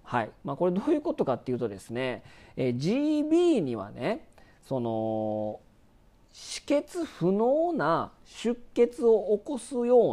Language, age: Japanese, 40-59